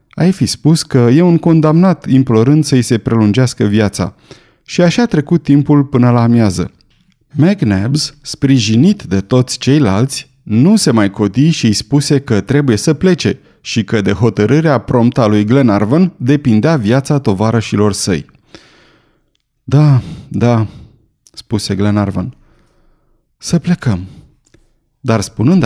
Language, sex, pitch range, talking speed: Romanian, male, 110-150 Hz, 130 wpm